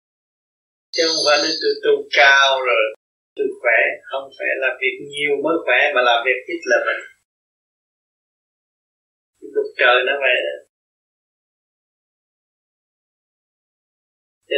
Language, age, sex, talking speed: Vietnamese, 20-39, male, 105 wpm